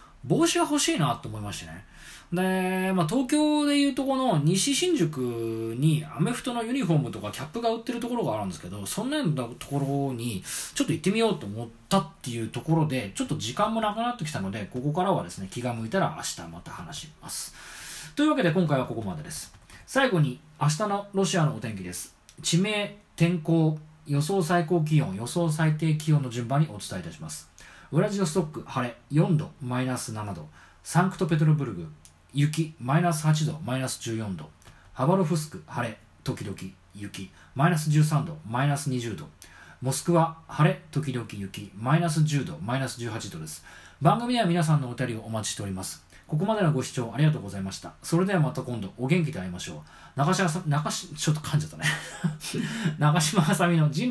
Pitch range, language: 115-175 Hz, Japanese